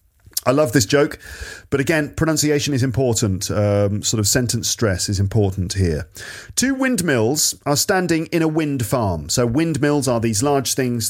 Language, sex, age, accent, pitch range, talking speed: English, male, 40-59, British, 100-125 Hz, 170 wpm